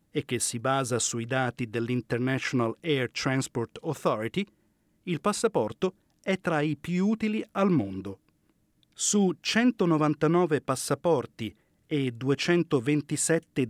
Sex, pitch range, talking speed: male, 130-175 Hz, 105 wpm